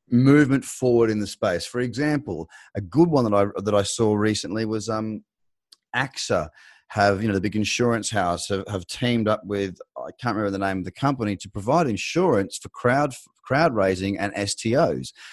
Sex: male